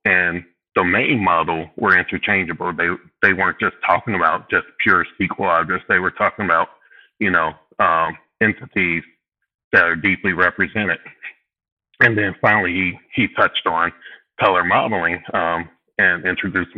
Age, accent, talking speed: 30-49, American, 140 wpm